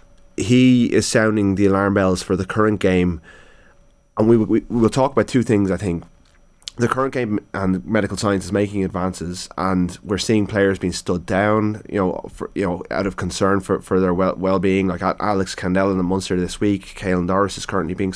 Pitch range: 90-105 Hz